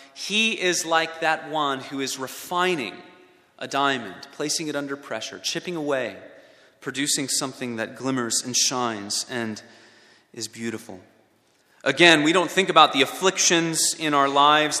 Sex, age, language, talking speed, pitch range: male, 30-49, English, 140 wpm, 125-170 Hz